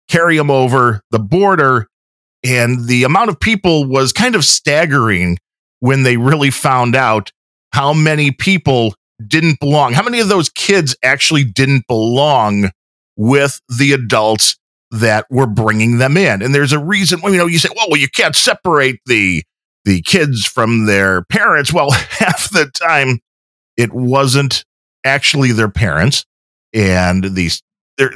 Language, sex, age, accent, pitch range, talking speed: English, male, 40-59, American, 110-145 Hz, 150 wpm